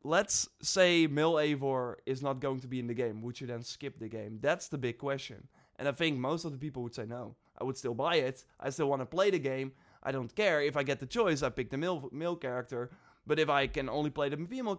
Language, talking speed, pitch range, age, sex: English, 270 wpm, 135-180 Hz, 20-39, male